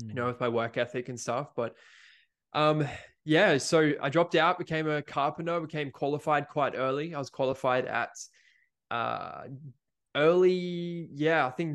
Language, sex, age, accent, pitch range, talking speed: English, male, 10-29, Australian, 125-145 Hz, 160 wpm